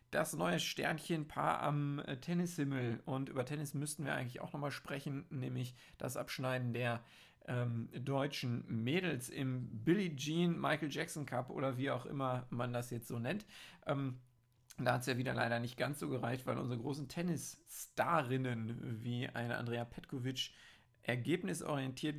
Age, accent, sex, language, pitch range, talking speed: 50-69, German, male, German, 125-150 Hz, 150 wpm